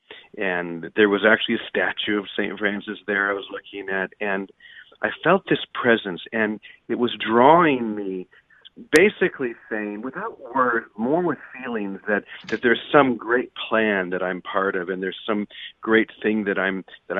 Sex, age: male, 40-59